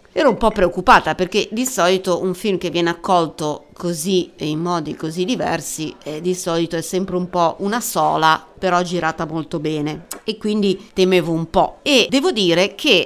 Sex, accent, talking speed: female, native, 180 wpm